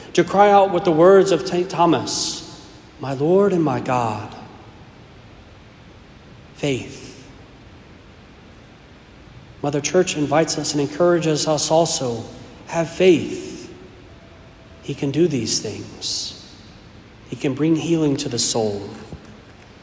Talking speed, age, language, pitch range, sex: 110 wpm, 40-59, English, 115-160 Hz, male